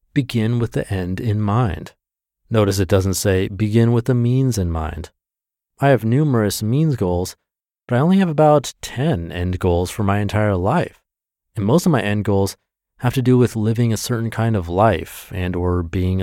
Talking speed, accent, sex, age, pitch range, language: 190 wpm, American, male, 30-49, 95-120 Hz, English